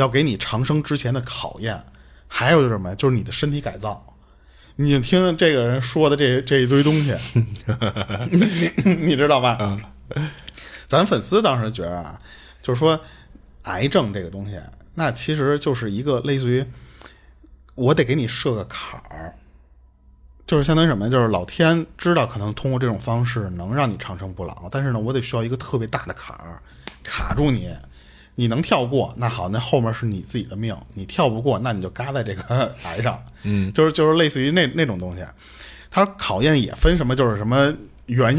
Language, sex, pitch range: Chinese, male, 95-140 Hz